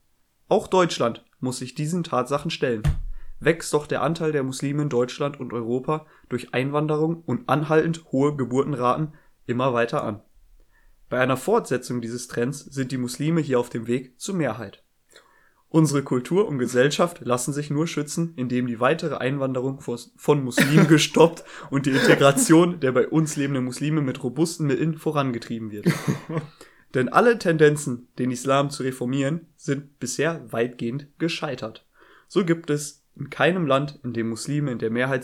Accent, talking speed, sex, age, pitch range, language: German, 155 wpm, male, 20-39, 125-155 Hz, English